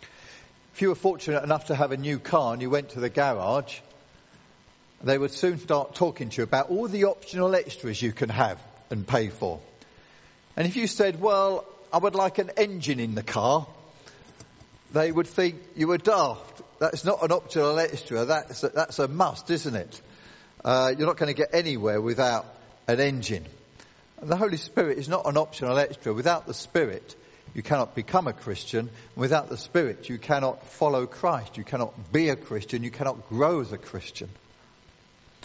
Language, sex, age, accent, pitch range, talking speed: English, male, 50-69, British, 125-165 Hz, 185 wpm